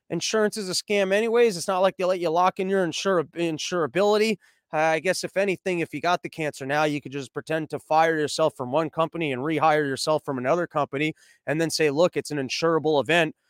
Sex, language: male, English